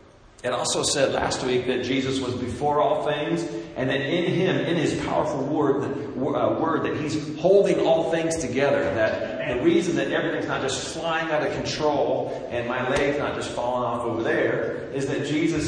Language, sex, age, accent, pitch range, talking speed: English, male, 40-59, American, 125-165 Hz, 190 wpm